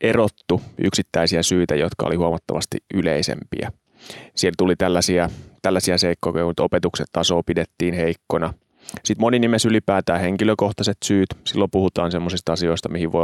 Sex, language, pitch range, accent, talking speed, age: male, Finnish, 85-100 Hz, native, 130 wpm, 30-49